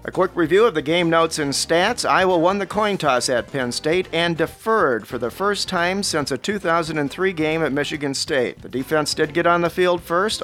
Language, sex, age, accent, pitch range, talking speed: English, male, 40-59, American, 145-170 Hz, 220 wpm